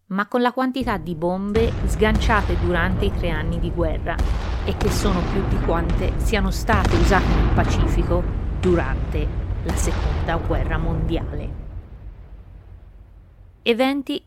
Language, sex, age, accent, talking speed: Italian, female, 30-49, native, 125 wpm